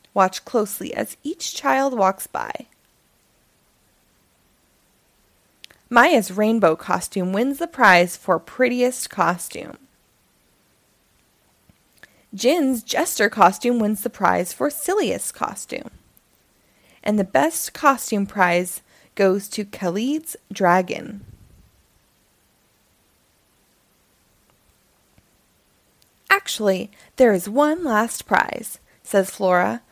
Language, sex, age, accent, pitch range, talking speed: English, female, 20-39, American, 190-255 Hz, 85 wpm